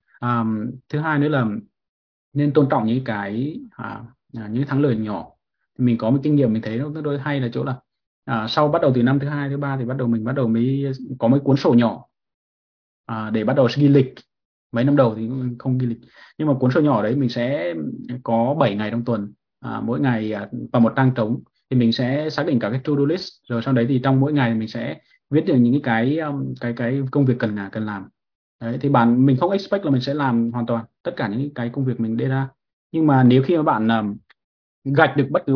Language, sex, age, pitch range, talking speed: Vietnamese, male, 20-39, 115-140 Hz, 250 wpm